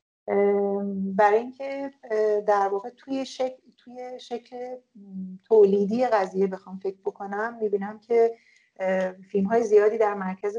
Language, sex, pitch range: Persian, female, 190-225 Hz